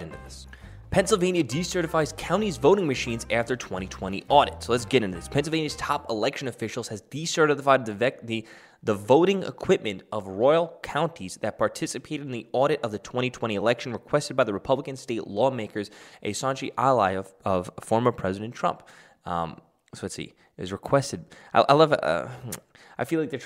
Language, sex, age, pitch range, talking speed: English, male, 10-29, 100-130 Hz, 170 wpm